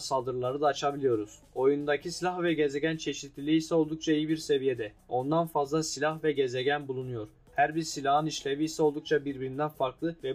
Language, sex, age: Turkish, male, 10-29